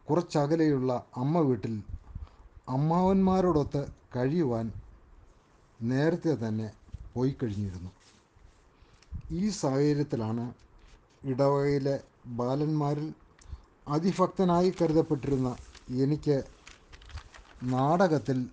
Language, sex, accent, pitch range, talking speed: Malayalam, male, native, 100-150 Hz, 50 wpm